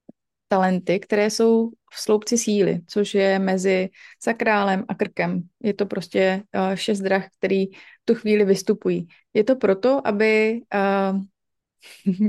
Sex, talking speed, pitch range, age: female, 130 wpm, 185-210 Hz, 20-39